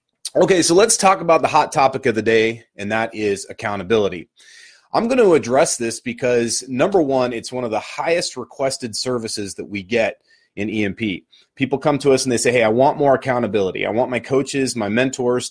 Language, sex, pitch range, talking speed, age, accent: English, male, 110-150 Hz, 200 wpm, 30-49, American